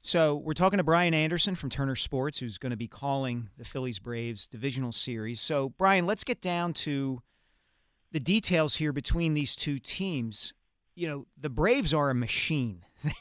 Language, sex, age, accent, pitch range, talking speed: English, male, 40-59, American, 120-165 Hz, 175 wpm